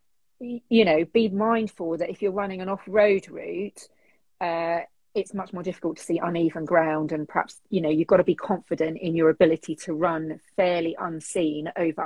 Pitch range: 160-195 Hz